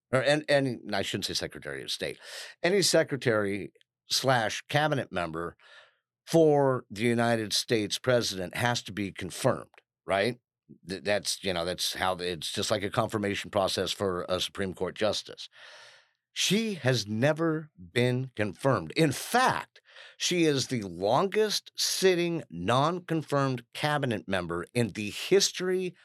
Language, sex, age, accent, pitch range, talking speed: English, male, 50-69, American, 105-150 Hz, 130 wpm